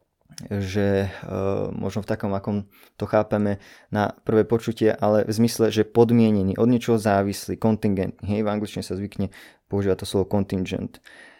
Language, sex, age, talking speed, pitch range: Slovak, male, 20-39, 155 wpm, 100-120 Hz